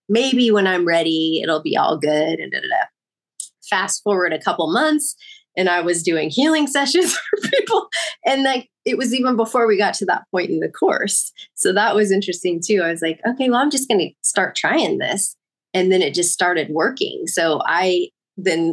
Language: English